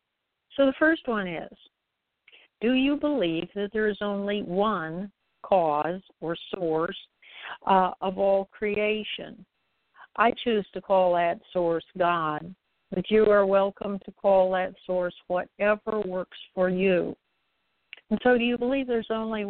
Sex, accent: female, American